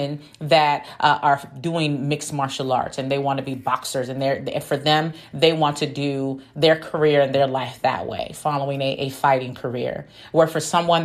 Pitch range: 135-160 Hz